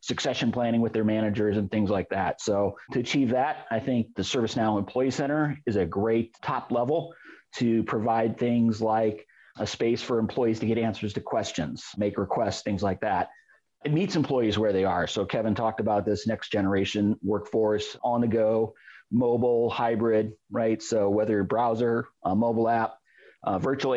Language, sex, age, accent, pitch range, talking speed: English, male, 40-59, American, 105-125 Hz, 170 wpm